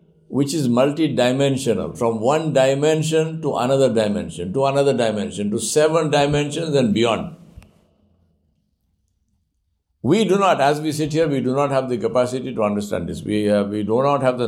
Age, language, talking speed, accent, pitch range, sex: 60-79, English, 165 wpm, Indian, 110-155 Hz, male